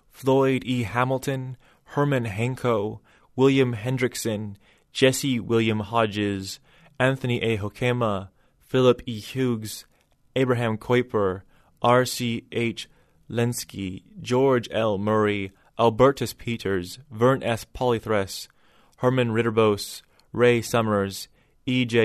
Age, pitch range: 20-39, 110-135 Hz